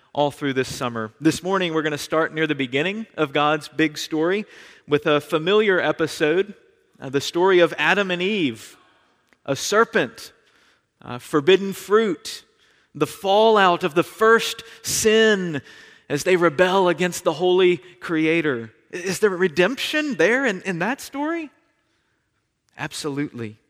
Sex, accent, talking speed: male, American, 140 wpm